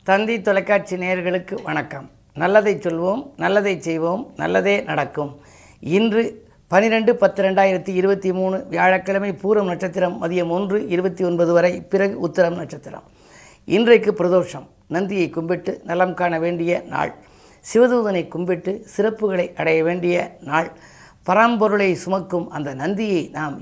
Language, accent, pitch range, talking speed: Tamil, native, 165-205 Hz, 105 wpm